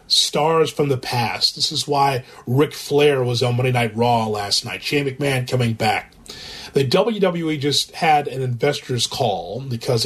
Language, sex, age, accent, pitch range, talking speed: English, male, 30-49, American, 125-145 Hz, 165 wpm